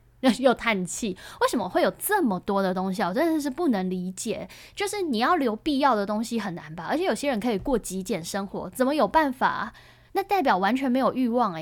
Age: 10-29